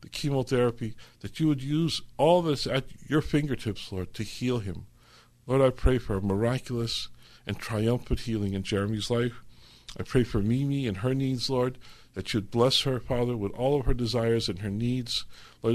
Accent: American